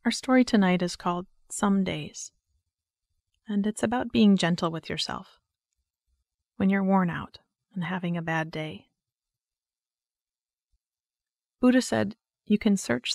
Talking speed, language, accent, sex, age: 130 wpm, English, American, female, 30-49